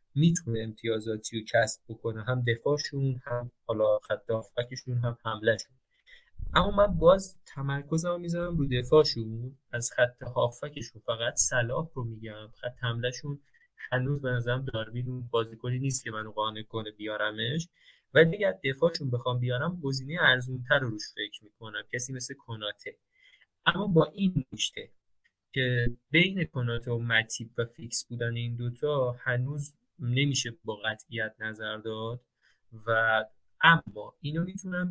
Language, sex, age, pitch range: Persian, male, 20-39, 115-140 Hz